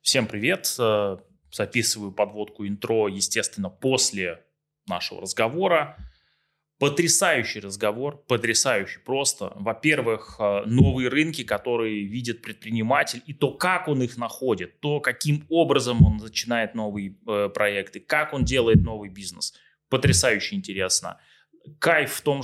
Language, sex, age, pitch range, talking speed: Russian, male, 20-39, 105-140 Hz, 110 wpm